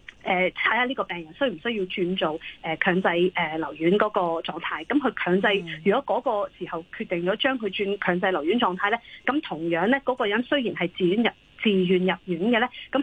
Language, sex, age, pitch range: Chinese, female, 30-49, 180-255 Hz